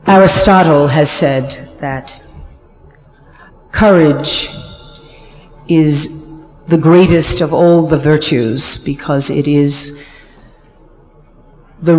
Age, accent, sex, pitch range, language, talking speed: 50-69, American, female, 140-170 Hz, English, 80 wpm